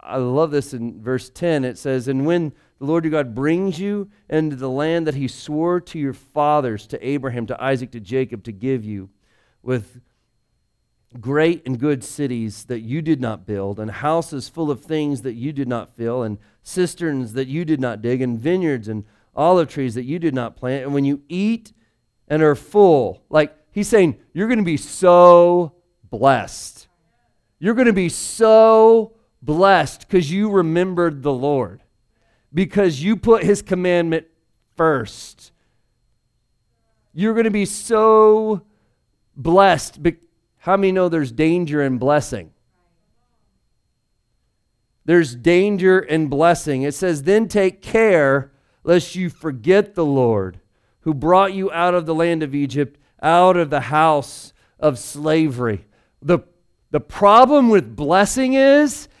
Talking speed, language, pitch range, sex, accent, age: 155 wpm, English, 125-175 Hz, male, American, 40-59